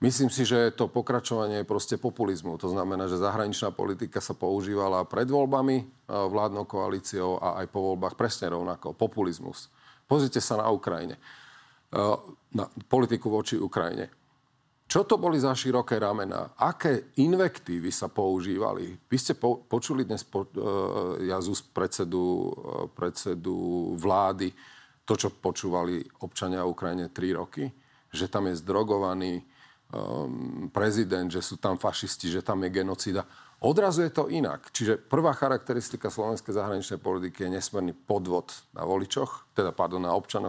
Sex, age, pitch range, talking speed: male, 40-59, 95-125 Hz, 135 wpm